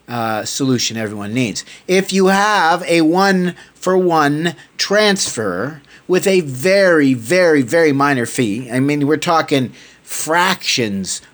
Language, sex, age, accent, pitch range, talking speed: English, male, 40-59, American, 110-145 Hz, 115 wpm